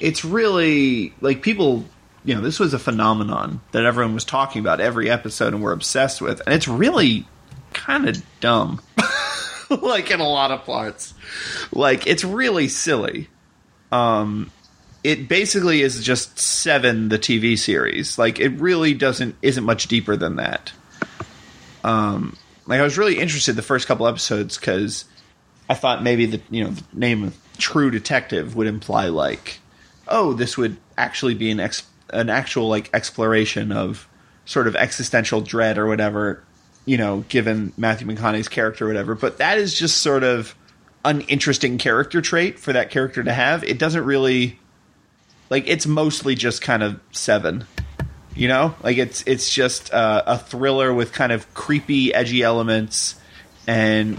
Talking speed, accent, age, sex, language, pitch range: 165 wpm, American, 30-49, male, English, 110-135 Hz